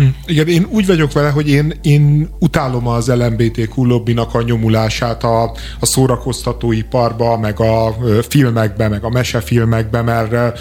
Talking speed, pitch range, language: 130 wpm, 115-130 Hz, Hungarian